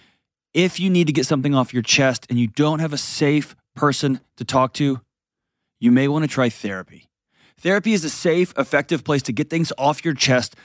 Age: 20-39